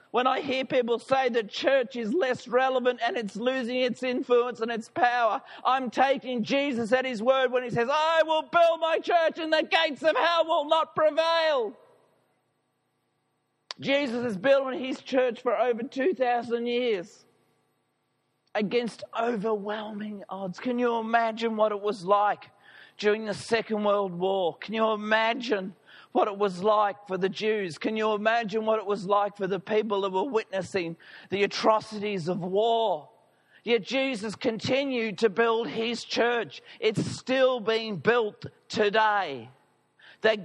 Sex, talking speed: male, 155 wpm